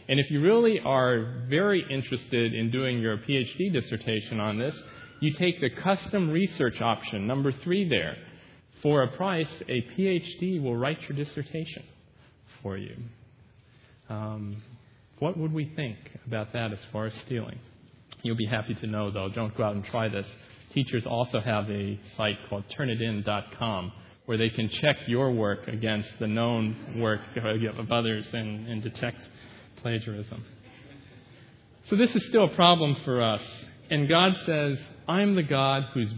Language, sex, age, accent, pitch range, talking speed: English, male, 40-59, American, 110-145 Hz, 160 wpm